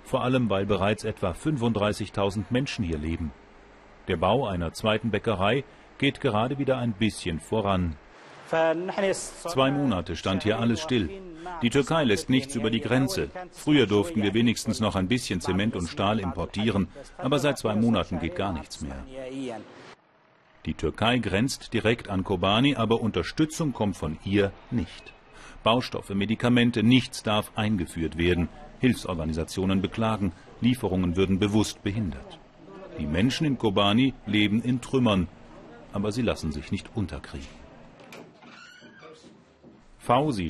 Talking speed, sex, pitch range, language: 135 wpm, male, 95-120 Hz, German